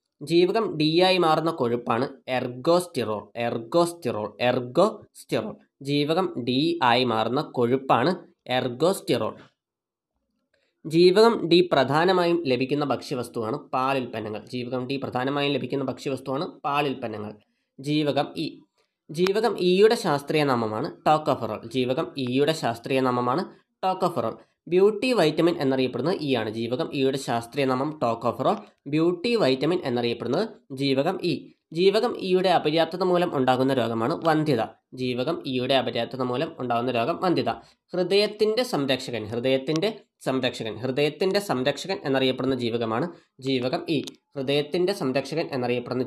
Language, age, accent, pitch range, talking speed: Malayalam, 20-39, native, 125-175 Hz, 105 wpm